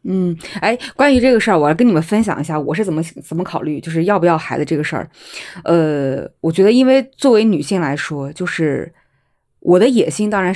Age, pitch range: 20-39, 165-210 Hz